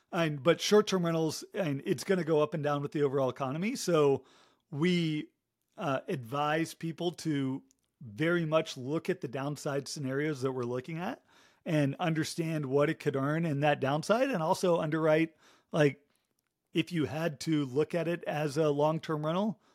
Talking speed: 175 wpm